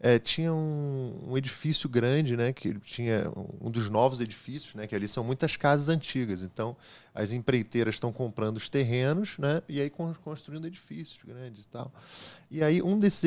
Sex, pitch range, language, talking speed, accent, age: male, 125-170 Hz, Portuguese, 175 wpm, Brazilian, 20-39